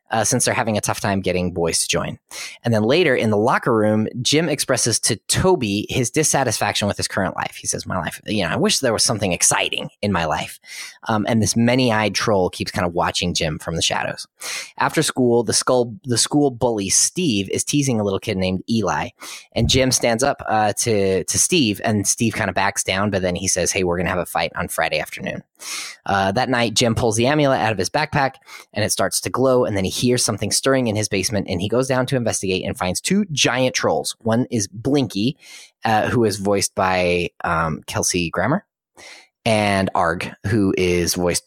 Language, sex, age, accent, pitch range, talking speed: English, male, 20-39, American, 95-125 Hz, 220 wpm